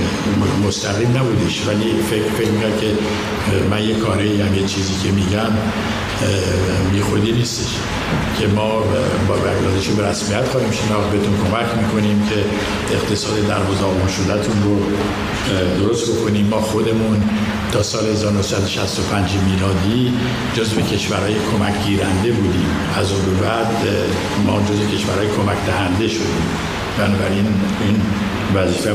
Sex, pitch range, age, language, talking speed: male, 100-110 Hz, 60-79, Persian, 120 wpm